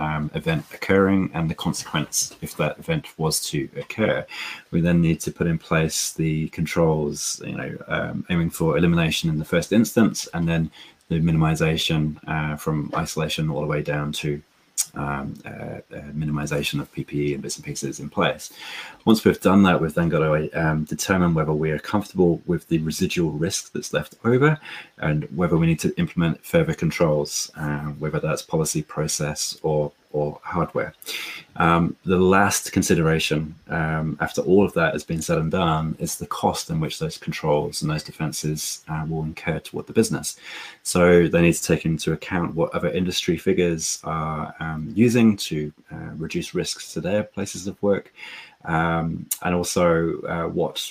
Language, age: English, 30-49